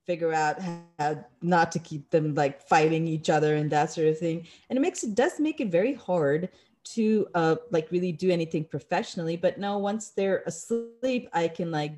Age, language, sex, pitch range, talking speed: 30-49, English, female, 160-210 Hz, 200 wpm